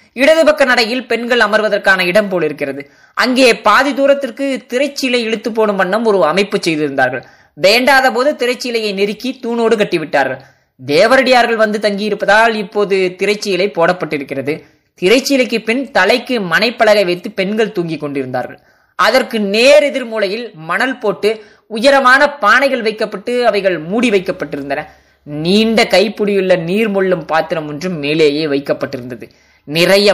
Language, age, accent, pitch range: Tamil, 20-39, native, 180-245 Hz